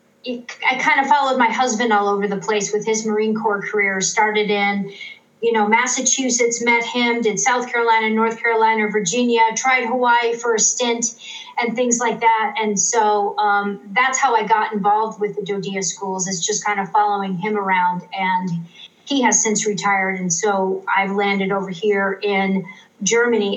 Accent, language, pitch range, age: American, English, 210-245 Hz, 40-59